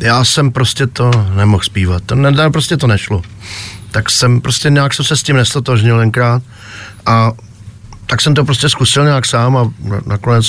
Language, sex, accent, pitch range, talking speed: Czech, male, native, 110-140 Hz, 170 wpm